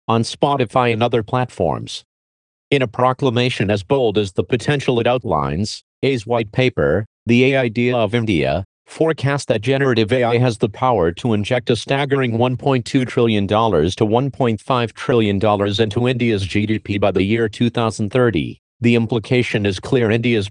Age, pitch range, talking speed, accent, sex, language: 50-69, 105-130 Hz, 150 wpm, American, male, English